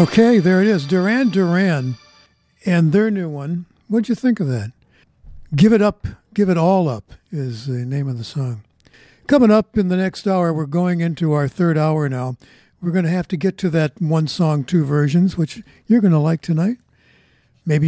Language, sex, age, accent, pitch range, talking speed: English, male, 60-79, American, 145-195 Hz, 200 wpm